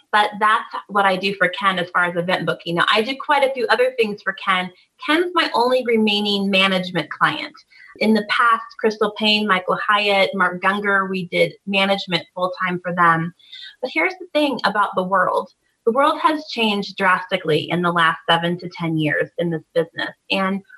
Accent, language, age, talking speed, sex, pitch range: American, English, 30-49, 190 wpm, female, 185-240 Hz